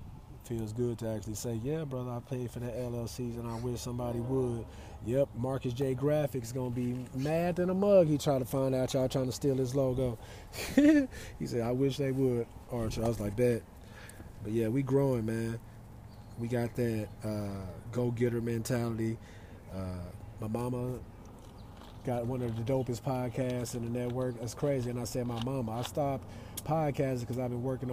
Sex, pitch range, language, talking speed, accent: male, 115-135 Hz, English, 185 wpm, American